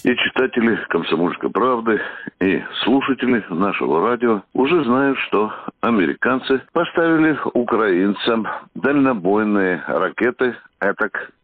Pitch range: 130-185 Hz